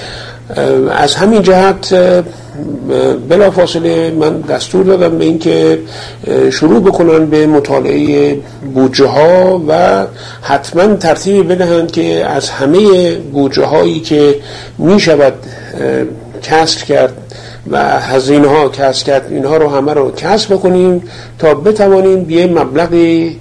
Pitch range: 130-170 Hz